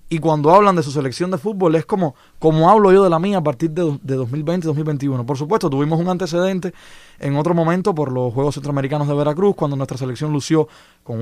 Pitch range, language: 145-180 Hz, Spanish